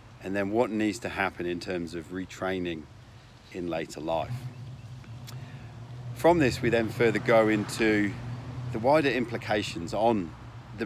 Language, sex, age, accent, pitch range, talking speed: English, male, 40-59, British, 100-120 Hz, 140 wpm